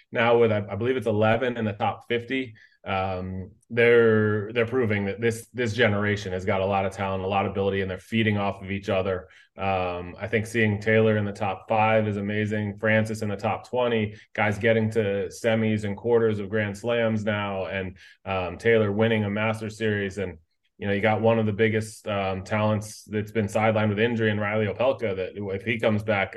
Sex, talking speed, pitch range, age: male, 210 wpm, 100-115 Hz, 20-39